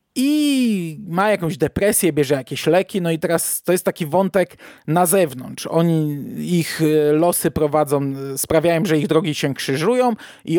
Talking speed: 155 wpm